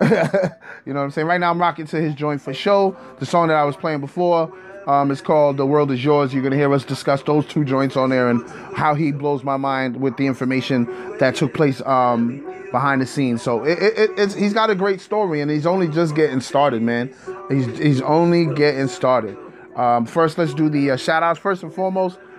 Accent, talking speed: American, 230 wpm